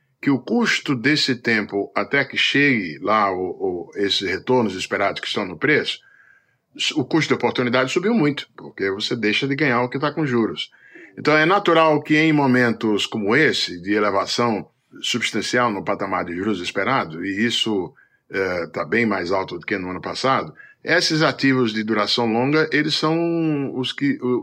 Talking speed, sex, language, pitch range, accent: 175 wpm, male, Portuguese, 105-145 Hz, Brazilian